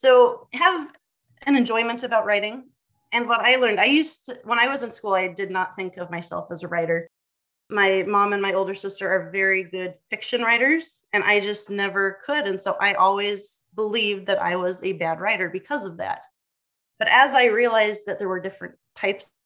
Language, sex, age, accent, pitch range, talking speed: English, female, 30-49, American, 185-230 Hz, 205 wpm